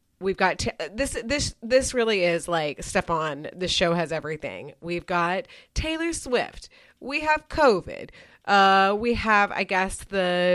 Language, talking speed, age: English, 160 wpm, 30-49